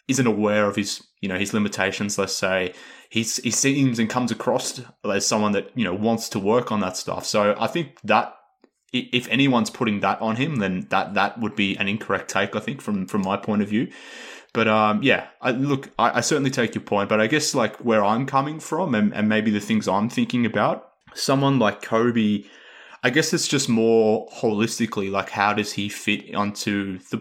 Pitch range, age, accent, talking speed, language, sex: 100-115 Hz, 20-39, Australian, 210 wpm, English, male